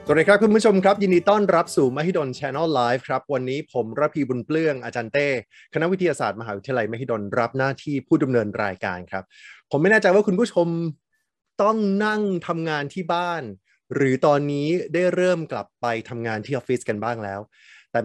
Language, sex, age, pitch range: Thai, male, 20-39, 120-160 Hz